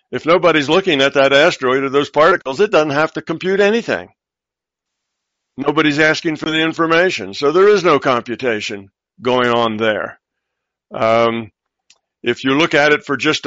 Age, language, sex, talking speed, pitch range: 60-79, English, male, 160 wpm, 135-165 Hz